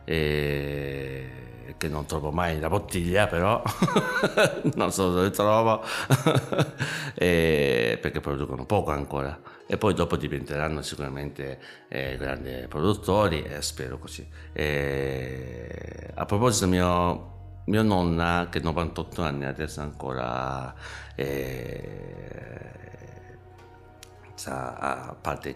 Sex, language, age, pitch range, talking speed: male, Italian, 60-79, 75-95 Hz, 105 wpm